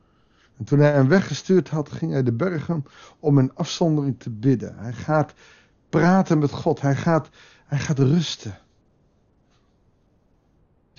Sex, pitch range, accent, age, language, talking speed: male, 140-190 Hz, Dutch, 50-69, Dutch, 140 wpm